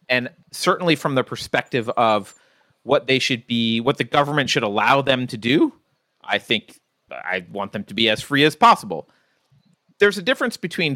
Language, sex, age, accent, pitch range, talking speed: English, male, 40-59, American, 130-185 Hz, 180 wpm